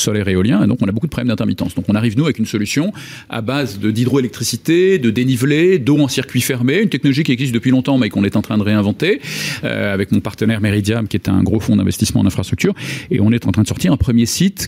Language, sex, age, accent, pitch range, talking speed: French, male, 40-59, French, 105-130 Hz, 260 wpm